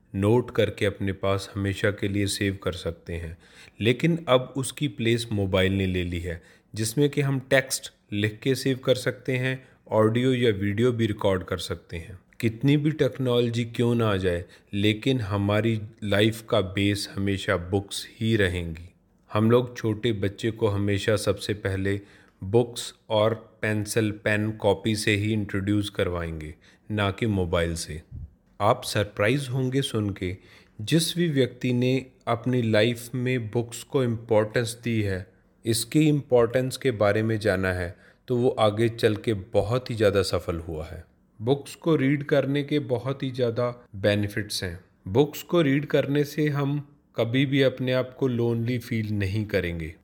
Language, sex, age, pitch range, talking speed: Hindi, male, 30-49, 100-130 Hz, 160 wpm